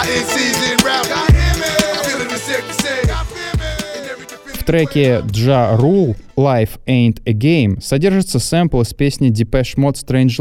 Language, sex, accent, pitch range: Russian, male, native, 105-140 Hz